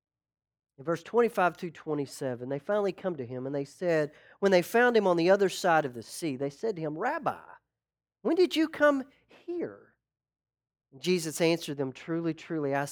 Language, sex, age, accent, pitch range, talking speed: English, male, 40-59, American, 145-200 Hz, 190 wpm